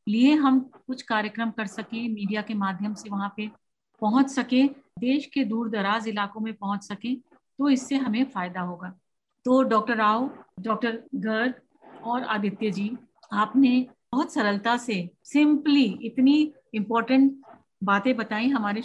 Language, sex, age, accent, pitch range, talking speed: Hindi, female, 50-69, native, 215-265 Hz, 145 wpm